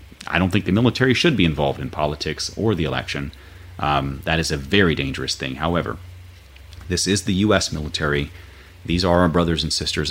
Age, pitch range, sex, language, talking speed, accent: 30-49, 80-95 Hz, male, English, 190 wpm, American